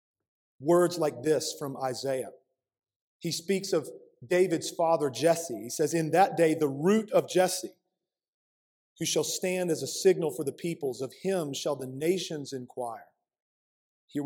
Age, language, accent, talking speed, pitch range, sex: 40-59, English, American, 150 wpm, 145-180 Hz, male